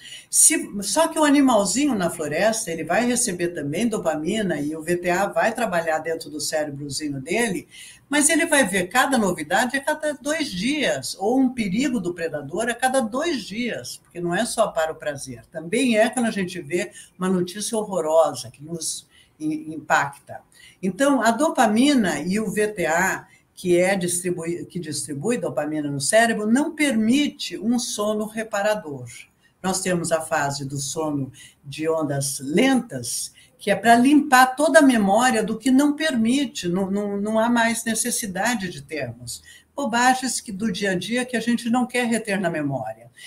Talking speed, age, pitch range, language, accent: 160 wpm, 60-79, 160-235 Hz, Portuguese, Brazilian